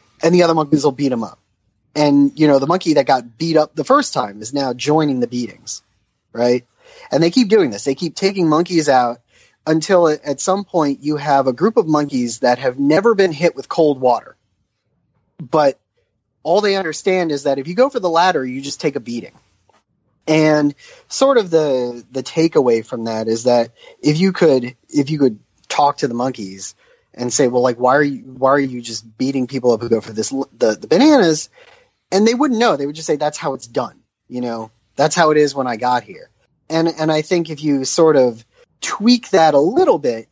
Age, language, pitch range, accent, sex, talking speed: 30-49, English, 125-160 Hz, American, male, 220 wpm